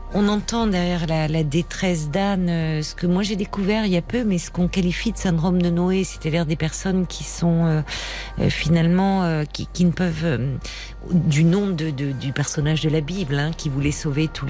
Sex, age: female, 50-69